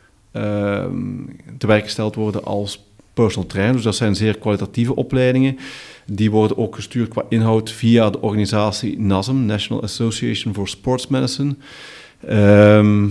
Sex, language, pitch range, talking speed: male, Dutch, 105-120 Hz, 135 wpm